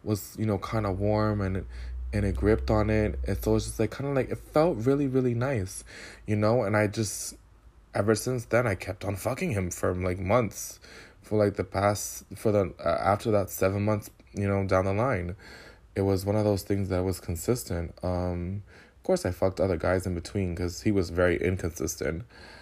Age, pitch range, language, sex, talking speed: 20-39, 95-115 Hz, English, male, 210 wpm